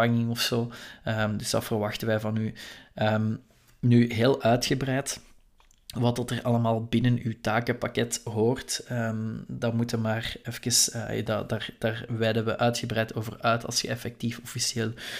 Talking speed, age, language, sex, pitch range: 150 wpm, 20-39, Dutch, male, 110-120 Hz